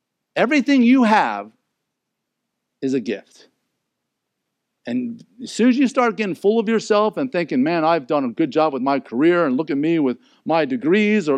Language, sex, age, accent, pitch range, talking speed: English, male, 50-69, American, 145-235 Hz, 185 wpm